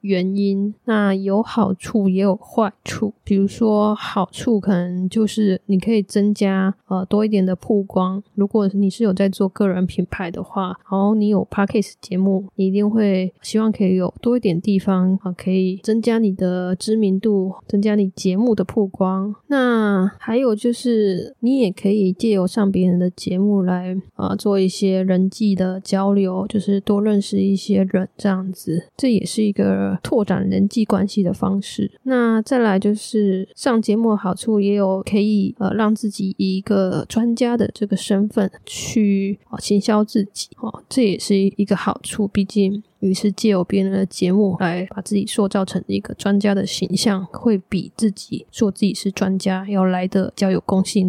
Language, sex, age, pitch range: Chinese, female, 10-29, 190-215 Hz